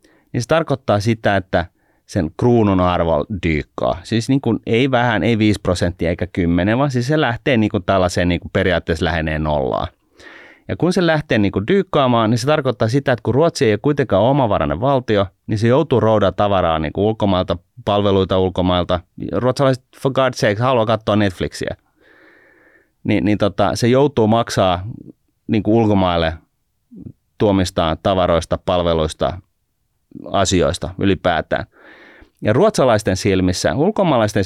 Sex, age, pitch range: male, 30-49, 90-125 Hz